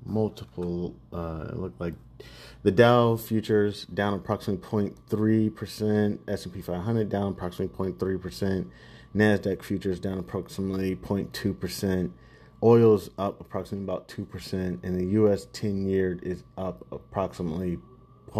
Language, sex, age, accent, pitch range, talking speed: English, male, 30-49, American, 95-120 Hz, 130 wpm